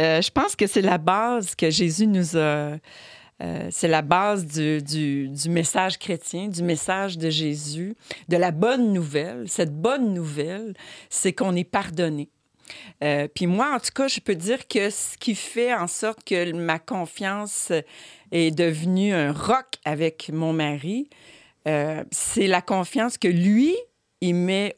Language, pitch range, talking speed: French, 160-220 Hz, 165 wpm